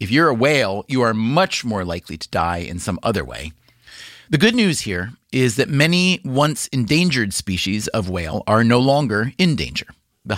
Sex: male